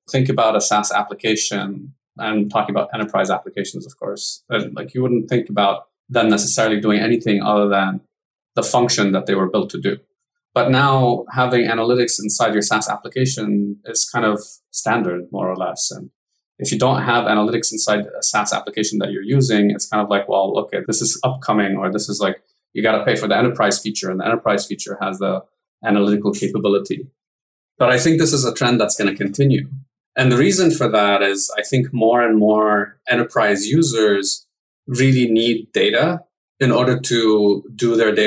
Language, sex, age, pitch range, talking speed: English, male, 20-39, 105-125 Hz, 190 wpm